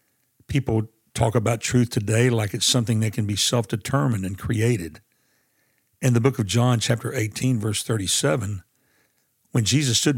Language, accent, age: English, American, 60-79